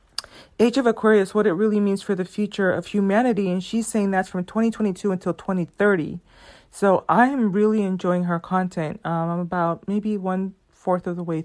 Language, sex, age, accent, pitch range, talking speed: English, female, 30-49, American, 175-215 Hz, 190 wpm